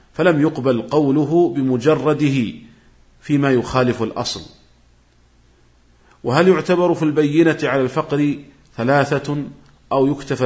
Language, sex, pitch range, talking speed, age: Arabic, male, 110-140 Hz, 90 wpm, 40-59